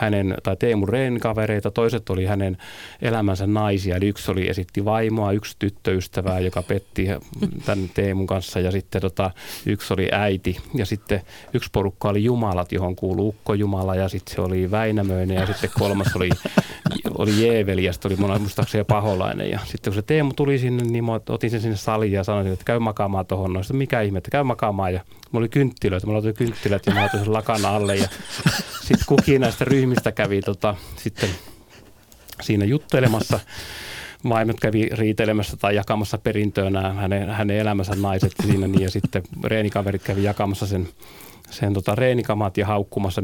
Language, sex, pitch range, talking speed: Finnish, male, 95-110 Hz, 170 wpm